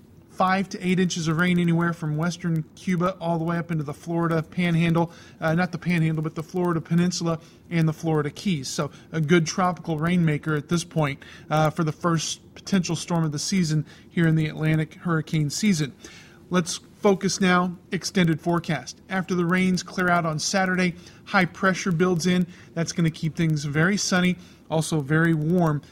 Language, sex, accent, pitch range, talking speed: English, male, American, 160-185 Hz, 185 wpm